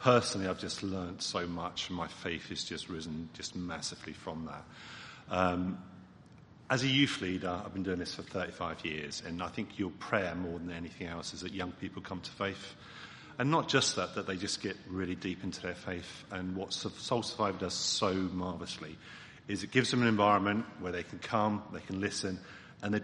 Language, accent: English, British